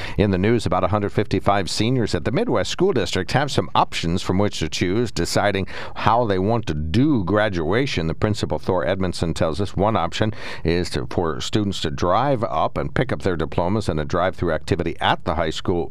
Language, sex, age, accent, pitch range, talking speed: English, male, 60-79, American, 80-100 Hz, 205 wpm